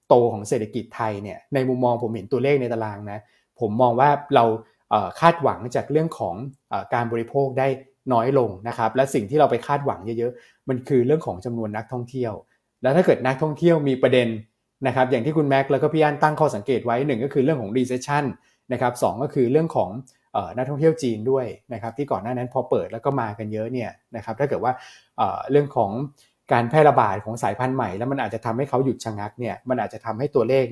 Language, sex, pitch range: Thai, male, 115-140 Hz